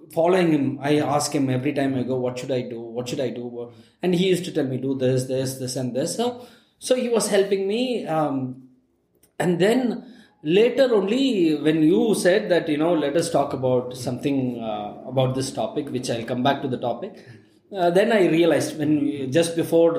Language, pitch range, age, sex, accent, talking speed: English, 130-190 Hz, 20-39, male, Indian, 215 wpm